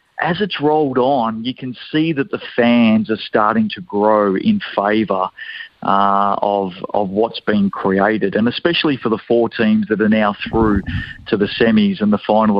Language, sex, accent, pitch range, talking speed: English, male, Australian, 105-140 Hz, 180 wpm